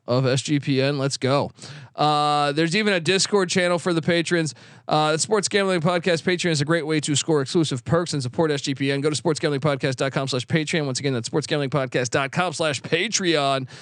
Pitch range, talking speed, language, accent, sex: 150-205 Hz, 160 wpm, English, American, male